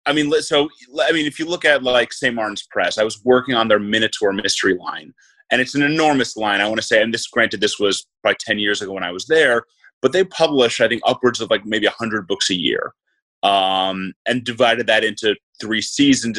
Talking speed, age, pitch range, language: 230 wpm, 30-49, 110-150 Hz, English